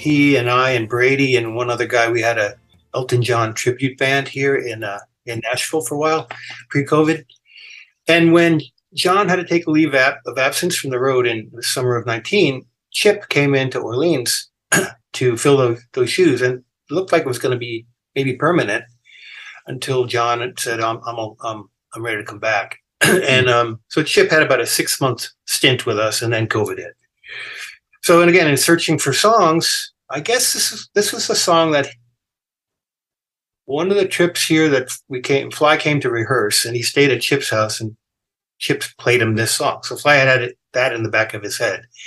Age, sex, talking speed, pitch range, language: 50-69, male, 205 wpm, 115-155 Hz, English